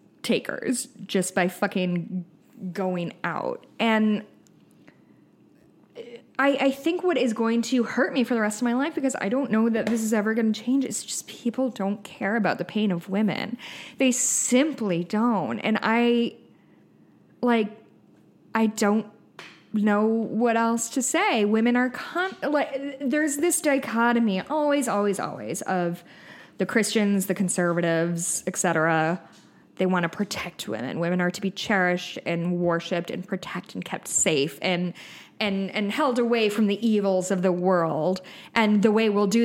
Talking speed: 160 wpm